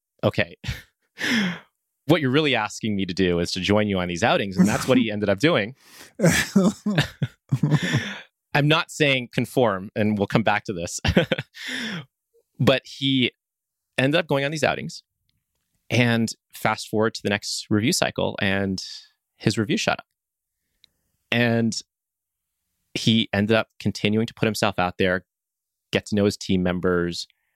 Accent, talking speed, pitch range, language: American, 150 wpm, 95-125 Hz, English